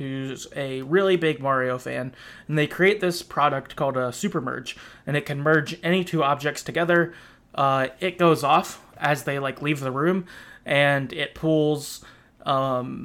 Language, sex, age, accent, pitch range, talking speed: English, male, 20-39, American, 140-165 Hz, 170 wpm